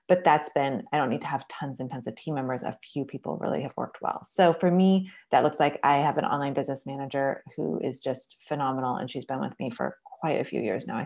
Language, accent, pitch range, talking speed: English, American, 140-175 Hz, 265 wpm